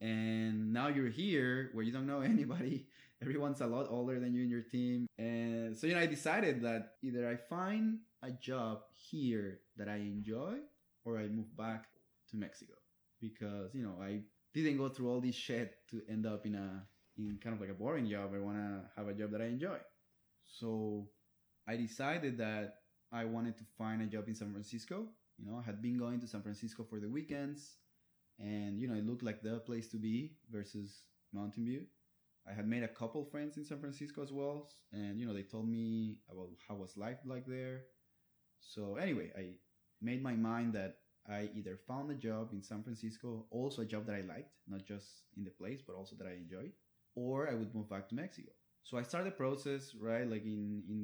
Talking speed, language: 210 wpm, English